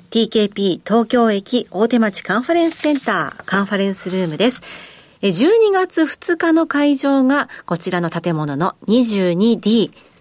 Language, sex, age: Japanese, female, 40-59